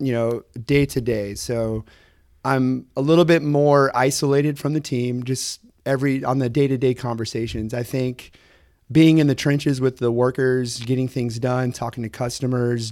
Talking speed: 165 wpm